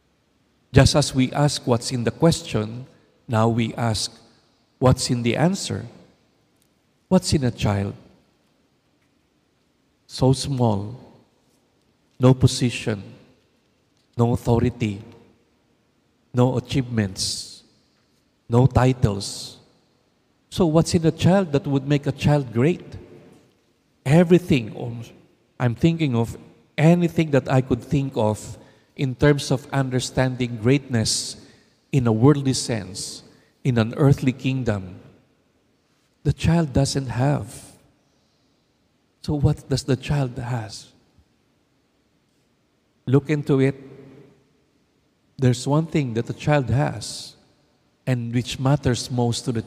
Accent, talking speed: Filipino, 110 wpm